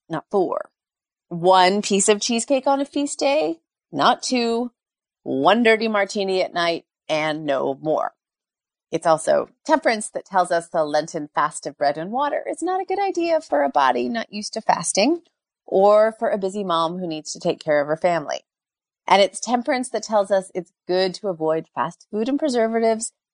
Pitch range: 170-225 Hz